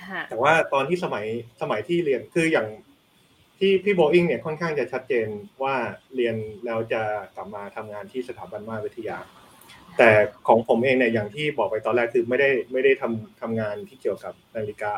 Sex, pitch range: male, 110-155 Hz